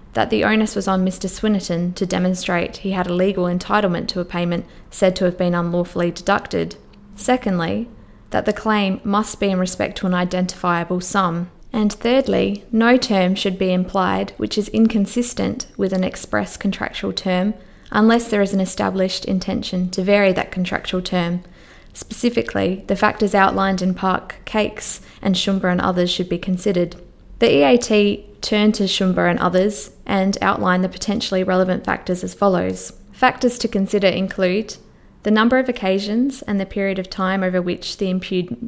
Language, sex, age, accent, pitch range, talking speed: English, female, 20-39, Australian, 180-210 Hz, 165 wpm